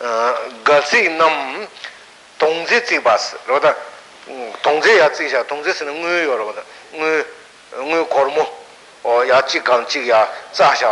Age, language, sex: 60-79, Italian, male